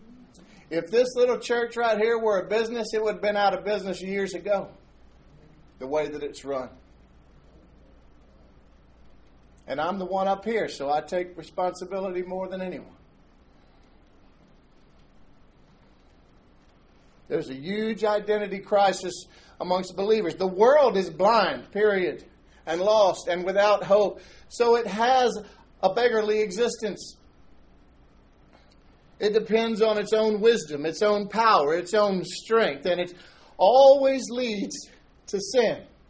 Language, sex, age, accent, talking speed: English, male, 50-69, American, 130 wpm